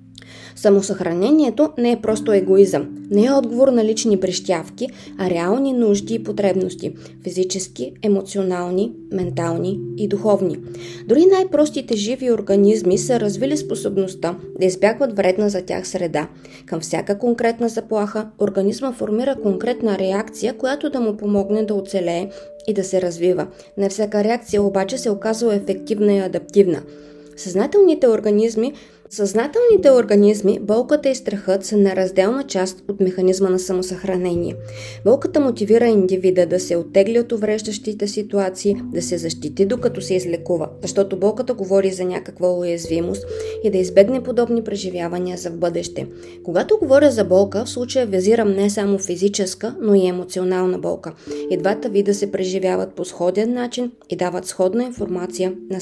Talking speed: 140 wpm